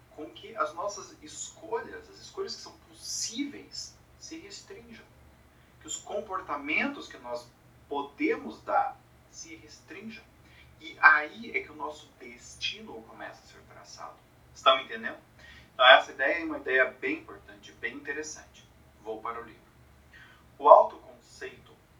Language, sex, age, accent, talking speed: Portuguese, male, 40-59, Brazilian, 135 wpm